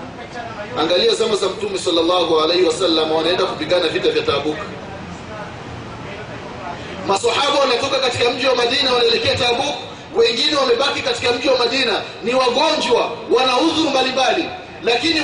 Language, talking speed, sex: Swahili, 125 wpm, male